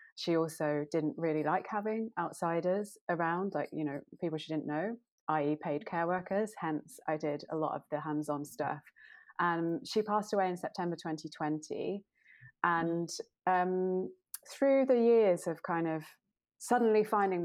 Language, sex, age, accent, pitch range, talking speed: English, female, 20-39, British, 155-205 Hz, 160 wpm